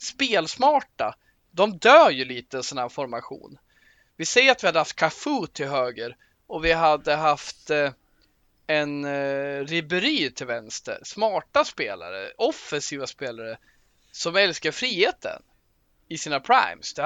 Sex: male